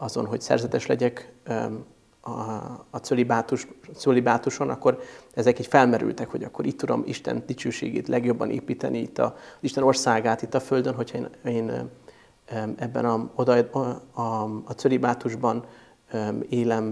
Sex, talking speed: male, 130 wpm